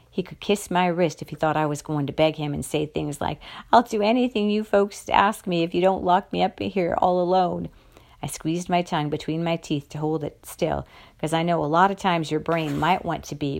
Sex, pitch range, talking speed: female, 145-175 Hz, 255 wpm